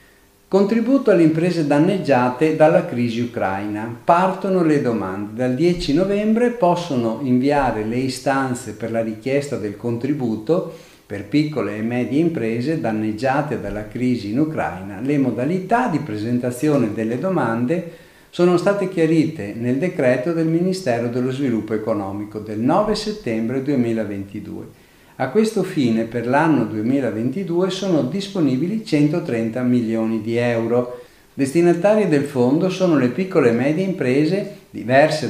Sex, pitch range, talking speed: male, 115-170 Hz, 125 wpm